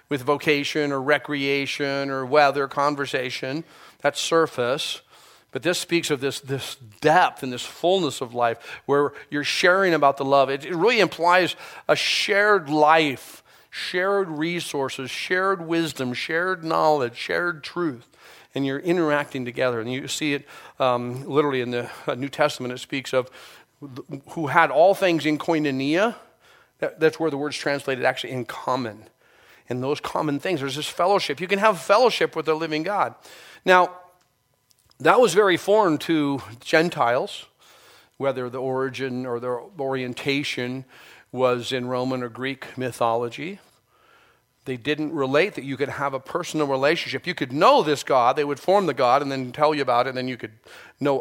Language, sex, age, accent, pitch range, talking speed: English, male, 40-59, American, 130-160 Hz, 165 wpm